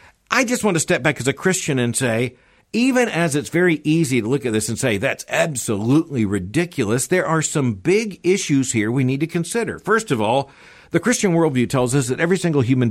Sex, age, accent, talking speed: male, 60-79, American, 220 wpm